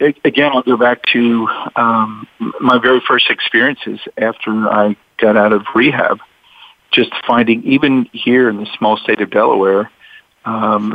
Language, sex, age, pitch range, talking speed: English, male, 50-69, 105-120 Hz, 150 wpm